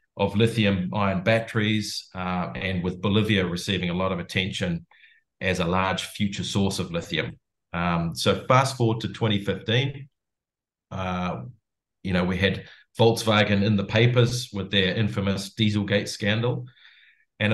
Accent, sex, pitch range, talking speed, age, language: Australian, male, 90-110 Hz, 140 wpm, 30-49, English